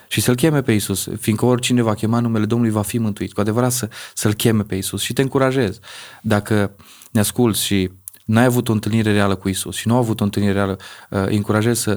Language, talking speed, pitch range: Romanian, 220 wpm, 100-120 Hz